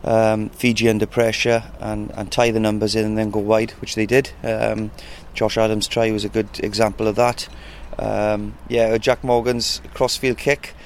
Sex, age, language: male, 30-49, English